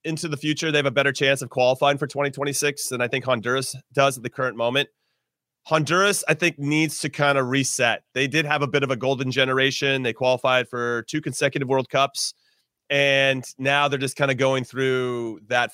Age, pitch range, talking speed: 30-49, 120-150 Hz, 205 wpm